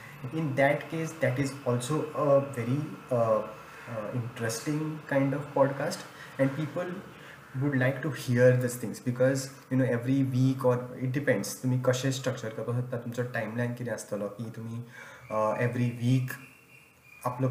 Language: Marathi